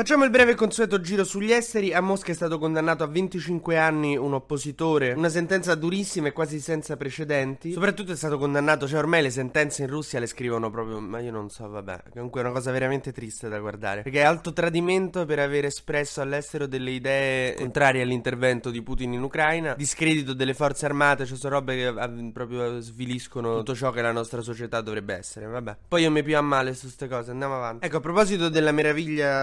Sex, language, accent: male, Italian, native